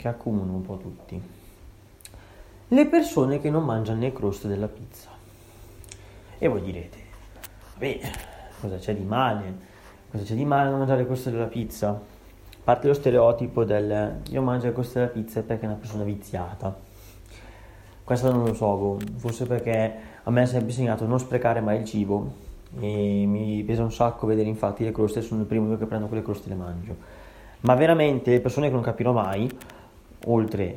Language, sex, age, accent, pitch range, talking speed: Italian, male, 30-49, native, 100-120 Hz, 180 wpm